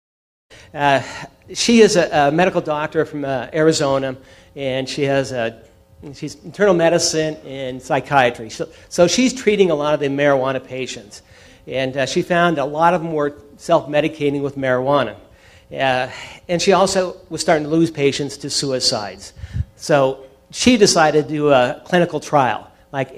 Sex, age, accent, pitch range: male, 50-69, American, 135-165 Hz